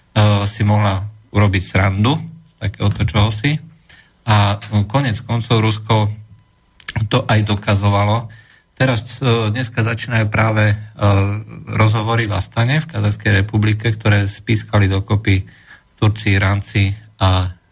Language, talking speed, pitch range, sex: Slovak, 115 wpm, 100-120 Hz, male